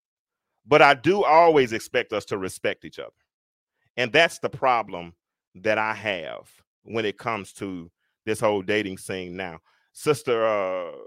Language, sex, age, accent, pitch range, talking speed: English, male, 30-49, American, 130-200 Hz, 150 wpm